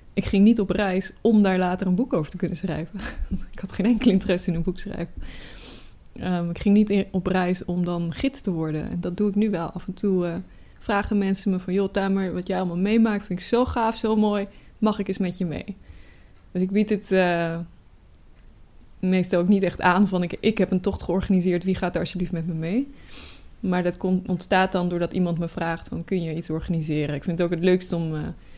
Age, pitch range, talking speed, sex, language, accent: 20-39, 175-205 Hz, 235 wpm, female, Dutch, Dutch